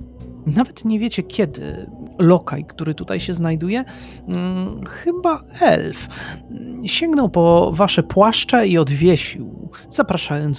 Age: 30-49